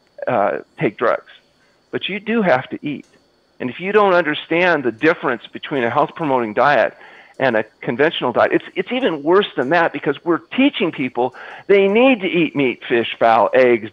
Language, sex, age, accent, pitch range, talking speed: English, male, 40-59, American, 125-175 Hz, 185 wpm